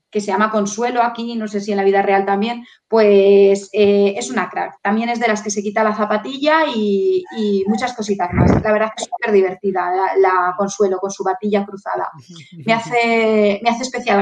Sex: female